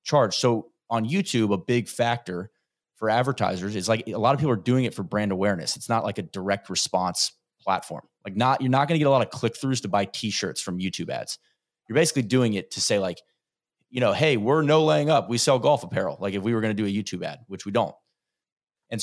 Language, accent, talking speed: English, American, 245 wpm